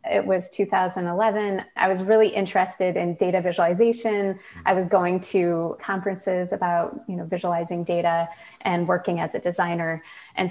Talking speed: 150 wpm